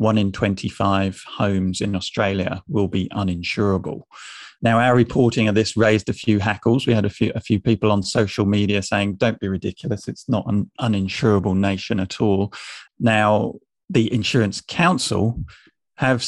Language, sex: English, male